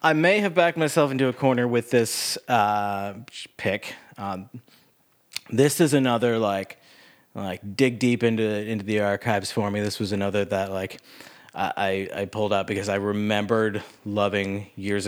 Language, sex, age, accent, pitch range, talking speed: English, male, 30-49, American, 95-115 Hz, 160 wpm